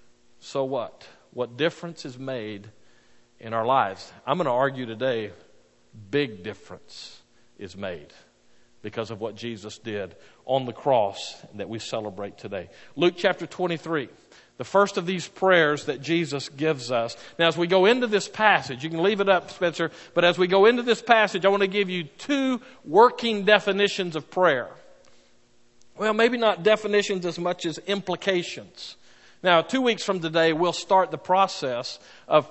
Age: 50-69